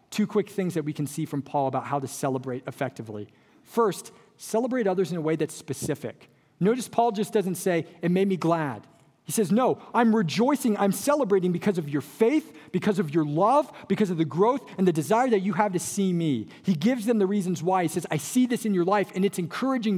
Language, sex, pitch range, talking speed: English, male, 155-220 Hz, 230 wpm